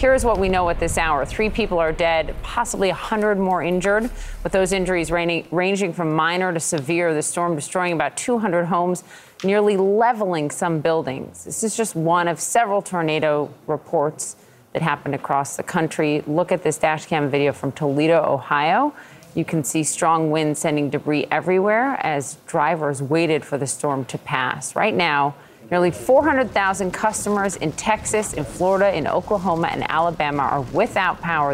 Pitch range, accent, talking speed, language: 145-185 Hz, American, 165 wpm, English